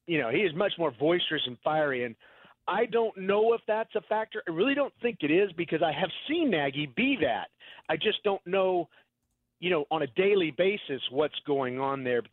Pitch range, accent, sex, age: 135-180 Hz, American, male, 40-59